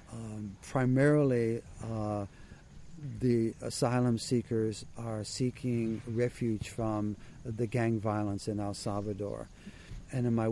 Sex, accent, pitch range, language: male, American, 105-120 Hz, English